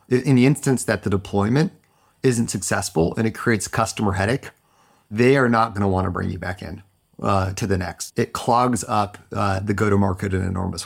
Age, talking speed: 30-49, 205 wpm